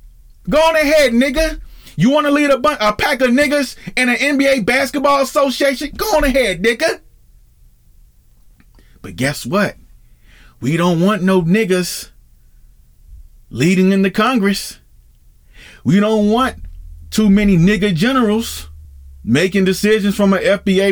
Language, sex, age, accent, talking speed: English, male, 40-59, American, 130 wpm